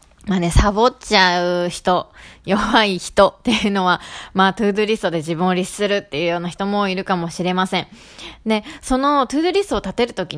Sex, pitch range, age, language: female, 175-235 Hz, 20-39, Japanese